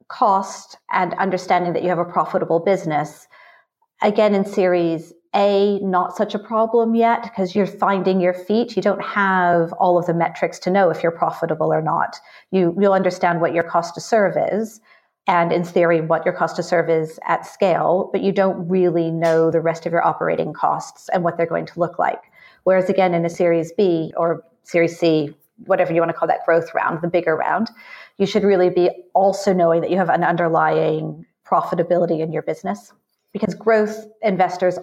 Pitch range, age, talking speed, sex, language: 165-195 Hz, 40-59, 195 wpm, female, English